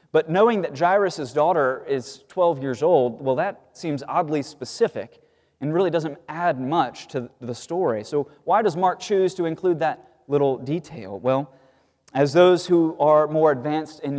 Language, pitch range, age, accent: English, 120-165 Hz, 30-49, American